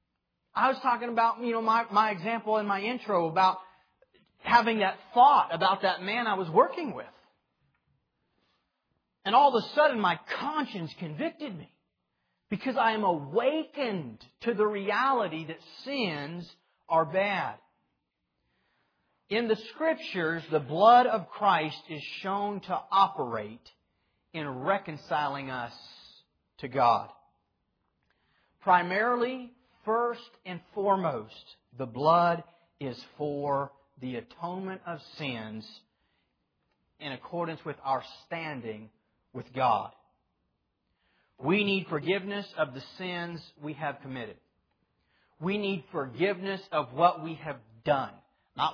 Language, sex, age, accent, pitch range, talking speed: English, male, 40-59, American, 150-215 Hz, 120 wpm